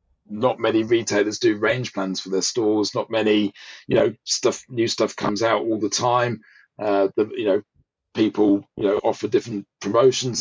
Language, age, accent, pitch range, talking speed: English, 40-59, British, 105-140 Hz, 180 wpm